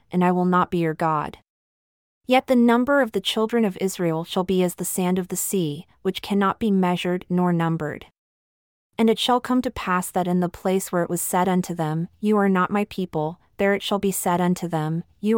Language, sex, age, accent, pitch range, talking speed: English, female, 30-49, American, 175-205 Hz, 225 wpm